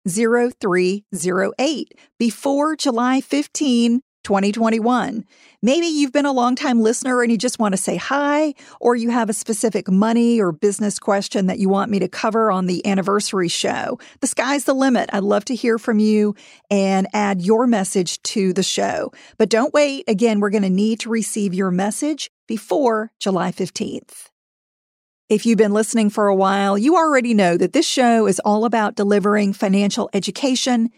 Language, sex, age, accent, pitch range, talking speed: English, female, 50-69, American, 200-265 Hz, 170 wpm